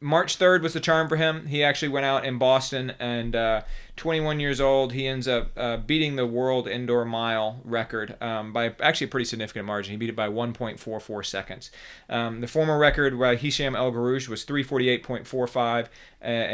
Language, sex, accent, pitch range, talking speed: English, male, American, 115-135 Hz, 180 wpm